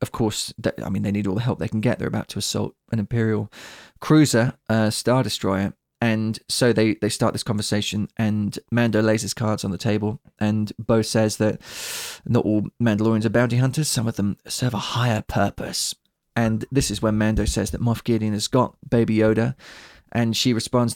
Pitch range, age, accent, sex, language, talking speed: 105-125 Hz, 20-39, British, male, English, 205 wpm